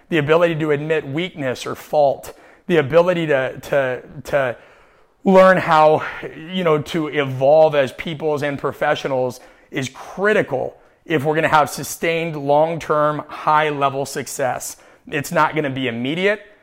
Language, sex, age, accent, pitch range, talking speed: English, male, 30-49, American, 135-160 Hz, 140 wpm